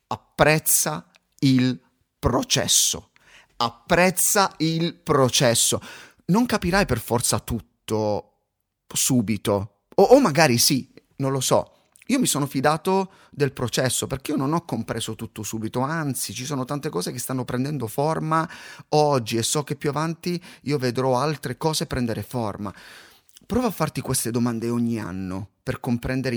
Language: Italian